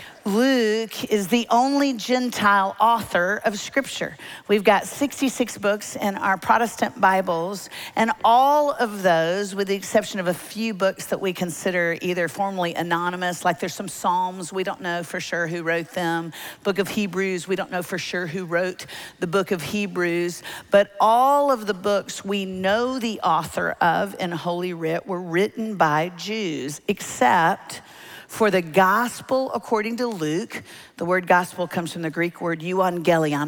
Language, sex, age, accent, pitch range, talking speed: English, female, 50-69, American, 170-205 Hz, 165 wpm